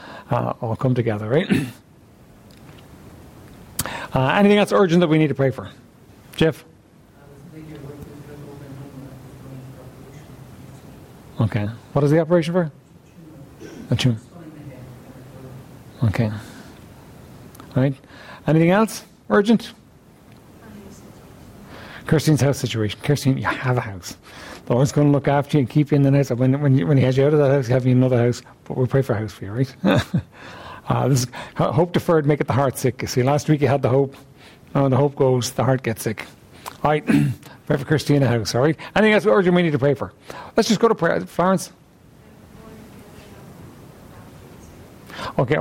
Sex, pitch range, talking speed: male, 130-155 Hz, 165 wpm